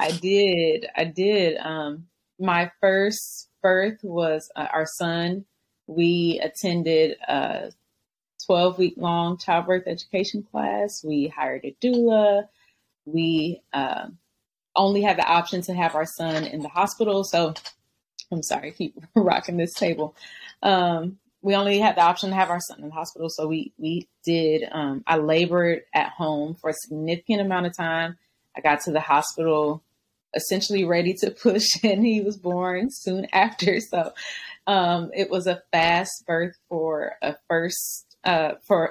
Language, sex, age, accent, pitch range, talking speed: English, female, 20-39, American, 160-195 Hz, 155 wpm